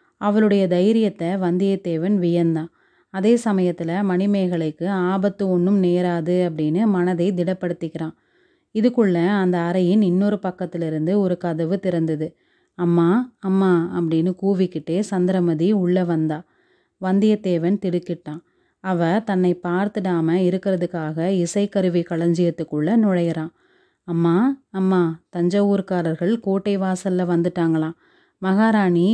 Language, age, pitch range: Tamil, 30-49, 170-200 Hz